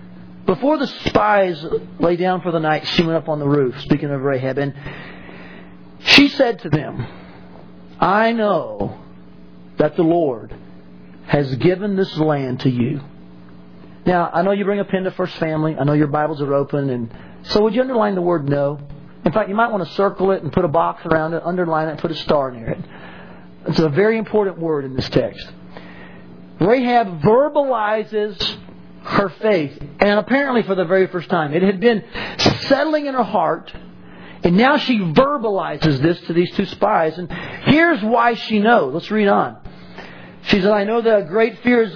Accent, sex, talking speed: American, male, 185 wpm